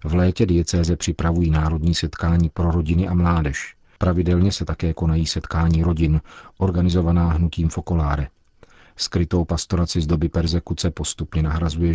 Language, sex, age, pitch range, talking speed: Czech, male, 40-59, 80-90 Hz, 130 wpm